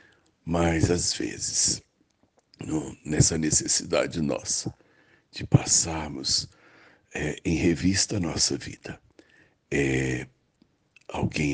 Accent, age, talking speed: Brazilian, 60-79, 90 wpm